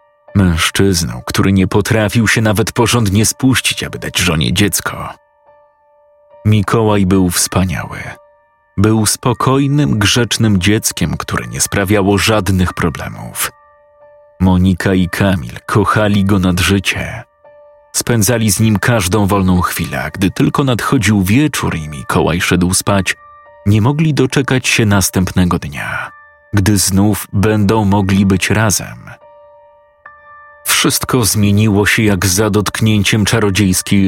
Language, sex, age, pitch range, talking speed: Polish, male, 30-49, 100-145 Hz, 115 wpm